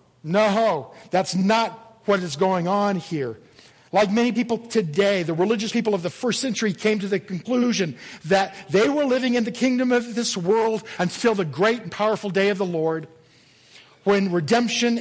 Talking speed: 175 wpm